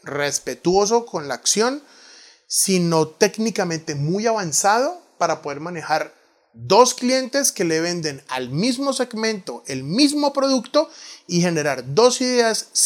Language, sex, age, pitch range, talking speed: Spanish, male, 30-49, 155-210 Hz, 120 wpm